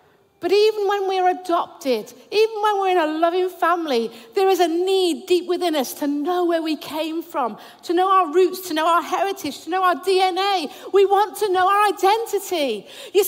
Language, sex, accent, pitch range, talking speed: English, female, British, 265-365 Hz, 200 wpm